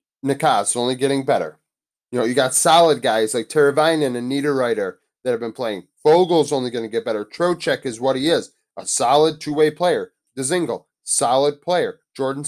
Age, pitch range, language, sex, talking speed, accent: 30-49, 130-190 Hz, English, male, 180 wpm, American